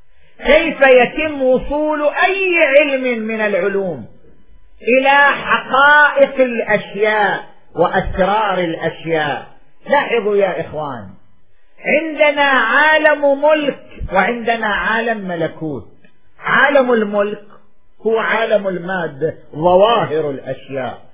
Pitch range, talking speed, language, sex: 205-270 Hz, 80 wpm, Arabic, male